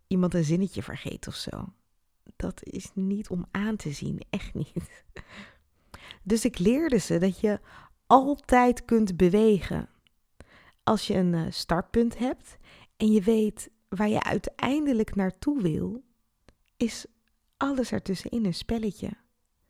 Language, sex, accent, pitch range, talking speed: Dutch, female, Dutch, 180-240 Hz, 130 wpm